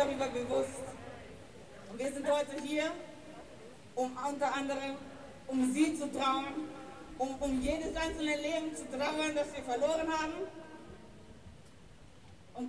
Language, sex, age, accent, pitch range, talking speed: German, female, 40-59, German, 275-320 Hz, 120 wpm